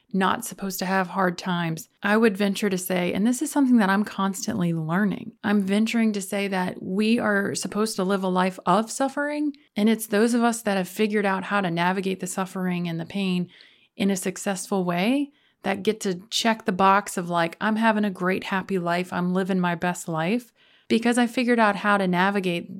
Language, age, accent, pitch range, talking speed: English, 30-49, American, 180-215 Hz, 210 wpm